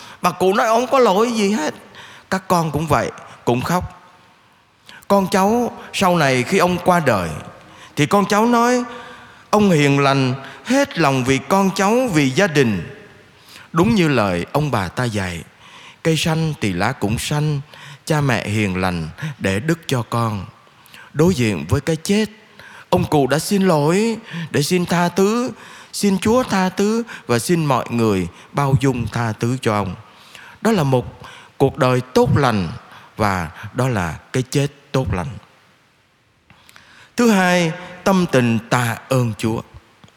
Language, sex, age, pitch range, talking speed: Vietnamese, male, 20-39, 130-195 Hz, 160 wpm